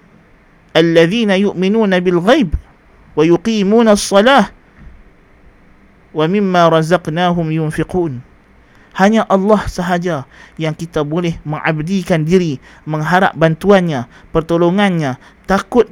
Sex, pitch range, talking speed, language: male, 160-200 Hz, 75 wpm, Malay